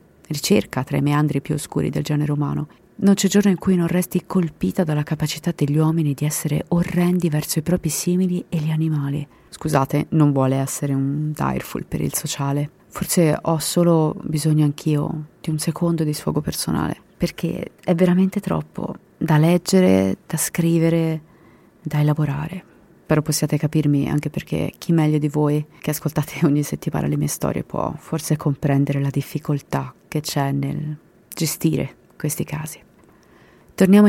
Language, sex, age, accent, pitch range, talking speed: Italian, female, 30-49, native, 145-175 Hz, 155 wpm